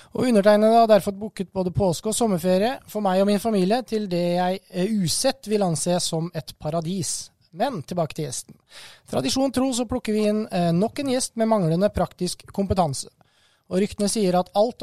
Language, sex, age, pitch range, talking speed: English, male, 20-39, 160-210 Hz, 190 wpm